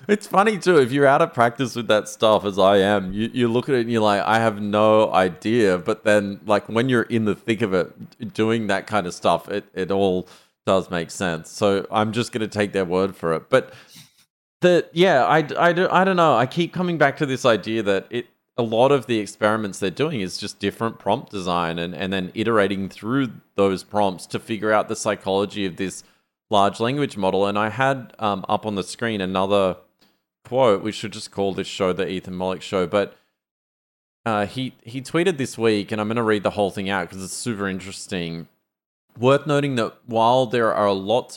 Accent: Australian